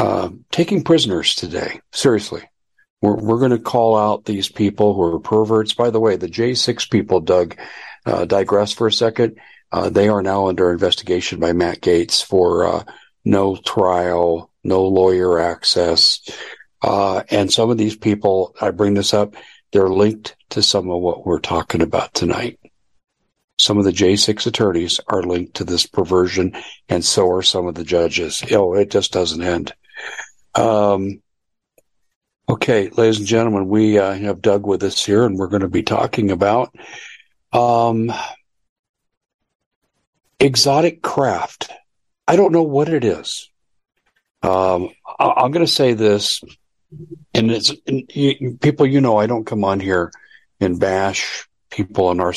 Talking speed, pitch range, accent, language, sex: 160 wpm, 90-115 Hz, American, English, male